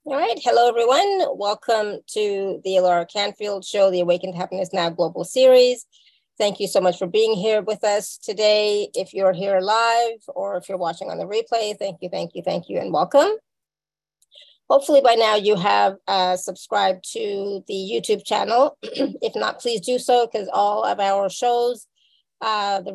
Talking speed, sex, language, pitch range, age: 180 wpm, female, English, 190-230 Hz, 30-49